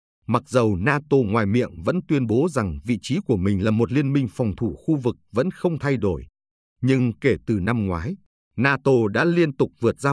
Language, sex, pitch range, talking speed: Vietnamese, male, 105-140 Hz, 215 wpm